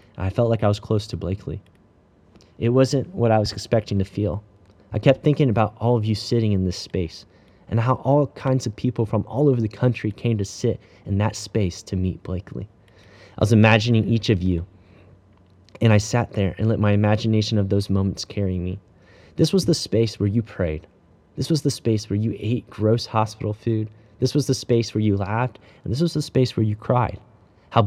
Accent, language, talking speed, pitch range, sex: American, English, 215 wpm, 95-115 Hz, male